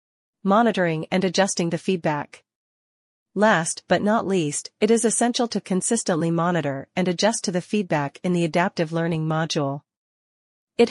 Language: English